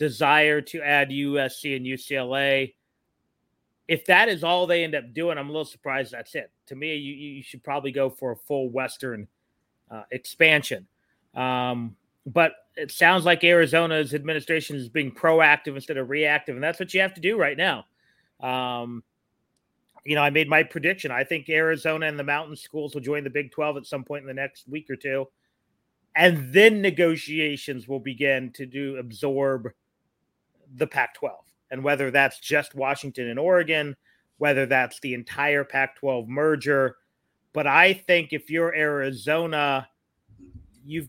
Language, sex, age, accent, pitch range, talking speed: English, male, 30-49, American, 135-160 Hz, 165 wpm